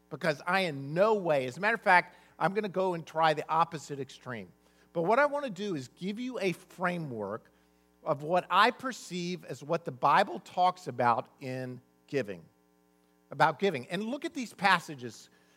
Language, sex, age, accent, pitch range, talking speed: English, male, 50-69, American, 130-195 Hz, 190 wpm